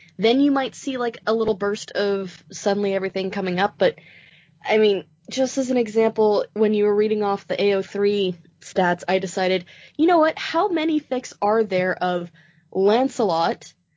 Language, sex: English, female